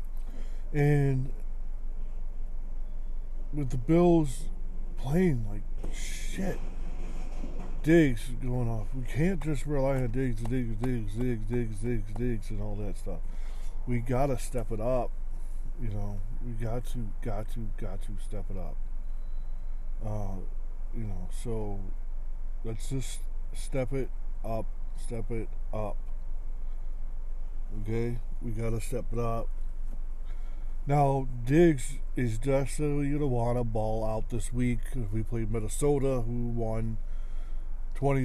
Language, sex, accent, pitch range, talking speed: English, male, American, 100-130 Hz, 125 wpm